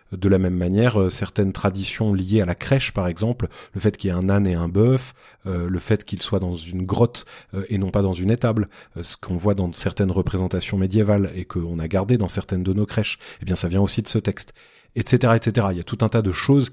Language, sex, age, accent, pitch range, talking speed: French, male, 30-49, French, 95-115 Hz, 255 wpm